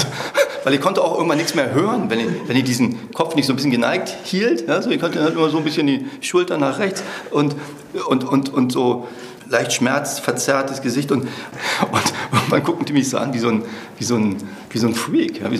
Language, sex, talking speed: German, male, 235 wpm